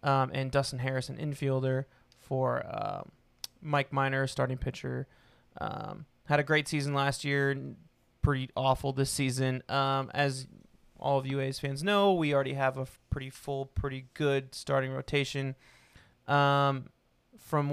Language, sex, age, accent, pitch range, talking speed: English, male, 20-39, American, 130-145 Hz, 145 wpm